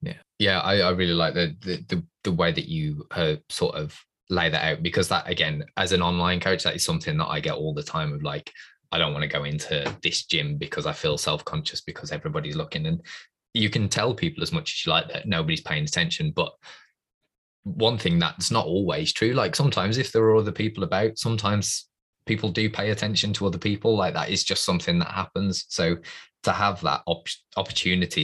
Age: 20-39